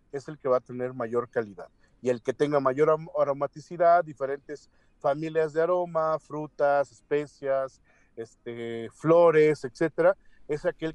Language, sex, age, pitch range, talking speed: Spanish, male, 40-59, 145-185 Hz, 135 wpm